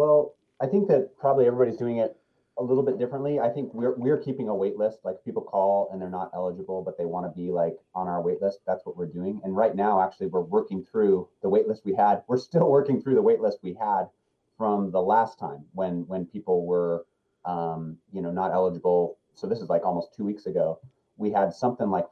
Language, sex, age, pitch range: English, male, 30-49, 95-135 Hz